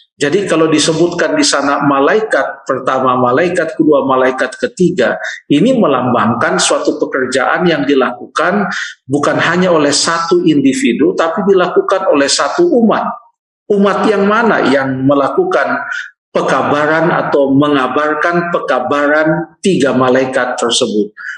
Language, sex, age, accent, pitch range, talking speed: Indonesian, male, 50-69, native, 130-180 Hz, 110 wpm